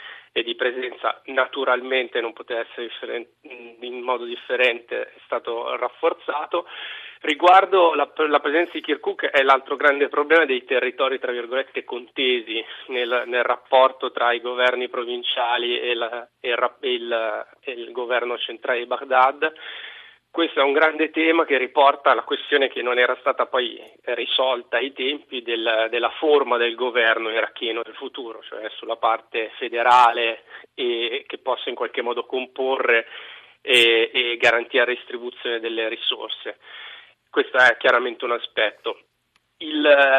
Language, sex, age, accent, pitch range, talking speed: Italian, male, 30-49, native, 125-175 Hz, 140 wpm